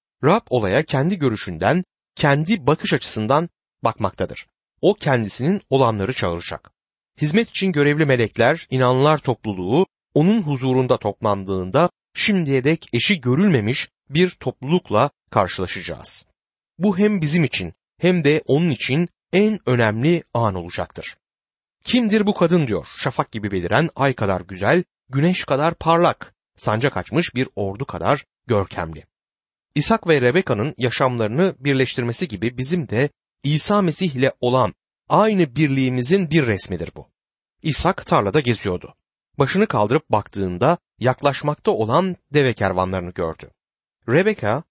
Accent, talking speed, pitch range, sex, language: native, 120 wpm, 110-165 Hz, male, Turkish